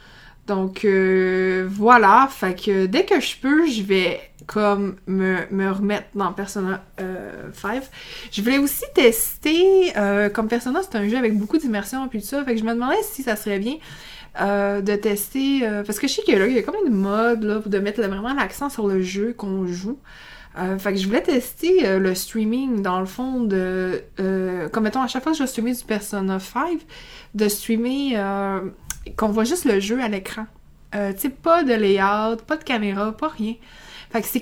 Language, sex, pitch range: French, female, 200-260 Hz